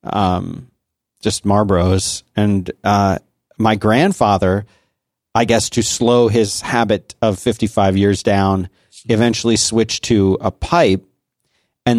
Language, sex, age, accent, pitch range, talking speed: English, male, 40-59, American, 100-120 Hz, 115 wpm